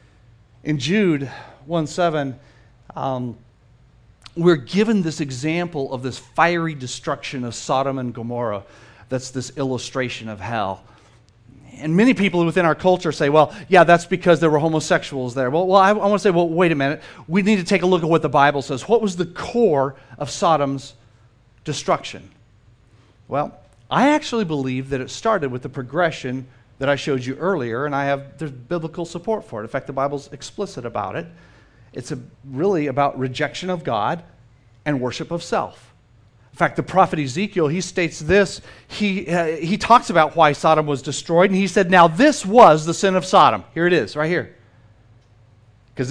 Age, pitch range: 40-59, 125-175 Hz